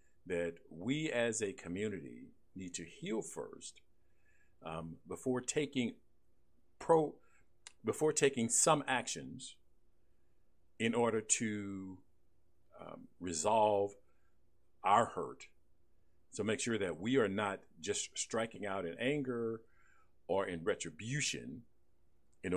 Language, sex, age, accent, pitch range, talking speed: English, male, 50-69, American, 85-120 Hz, 105 wpm